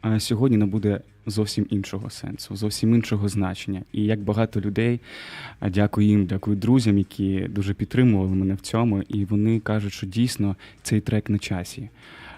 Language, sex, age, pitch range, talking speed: Ukrainian, male, 20-39, 100-120 Hz, 160 wpm